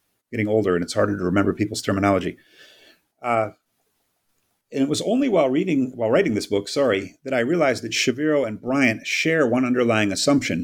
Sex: male